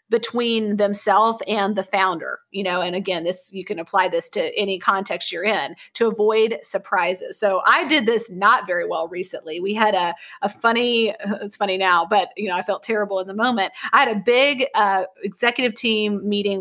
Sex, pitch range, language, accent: female, 200-250 Hz, English, American